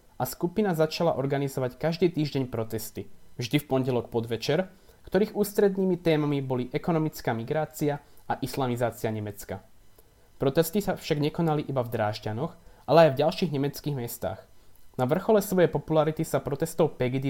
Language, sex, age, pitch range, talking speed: Slovak, male, 20-39, 120-160 Hz, 140 wpm